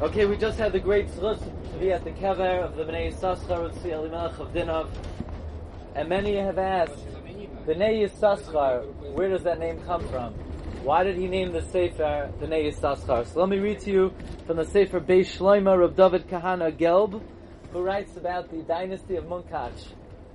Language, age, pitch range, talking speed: English, 30-49, 160-215 Hz, 185 wpm